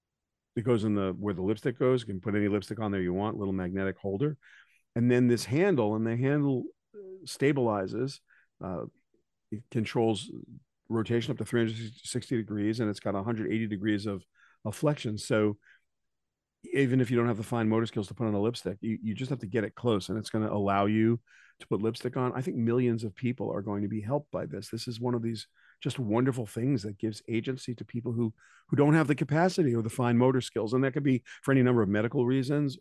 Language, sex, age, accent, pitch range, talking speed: English, male, 40-59, American, 105-130 Hz, 225 wpm